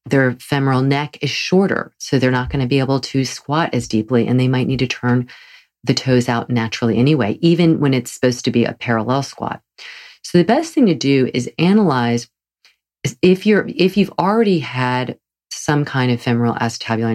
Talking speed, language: 205 wpm, English